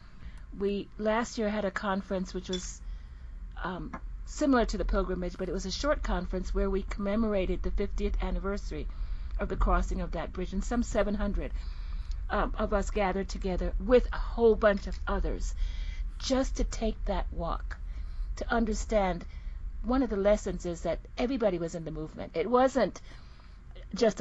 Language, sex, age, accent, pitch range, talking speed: English, female, 40-59, American, 130-210 Hz, 165 wpm